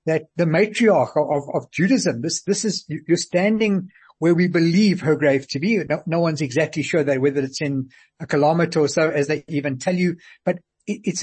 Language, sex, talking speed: English, male, 205 wpm